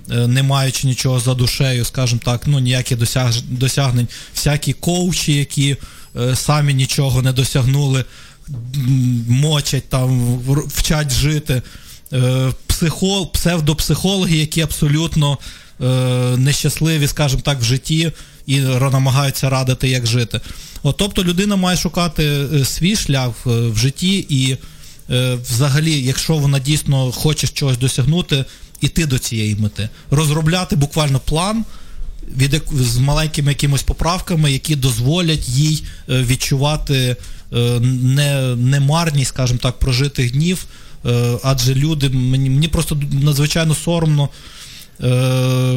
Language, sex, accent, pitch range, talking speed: Ukrainian, male, native, 125-155 Hz, 110 wpm